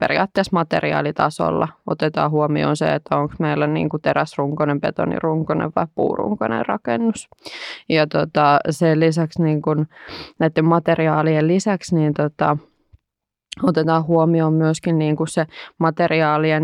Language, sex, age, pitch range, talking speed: Finnish, female, 20-39, 150-165 Hz, 110 wpm